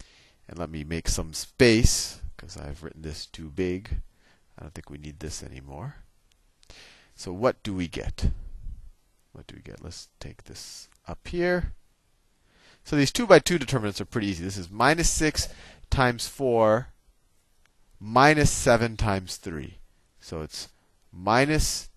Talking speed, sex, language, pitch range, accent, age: 150 wpm, male, English, 80-115 Hz, American, 40-59